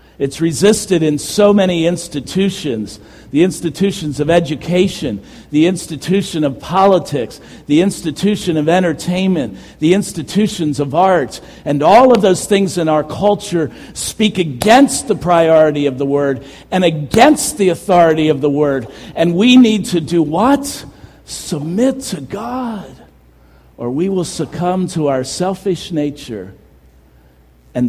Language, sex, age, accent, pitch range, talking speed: English, male, 50-69, American, 135-190 Hz, 135 wpm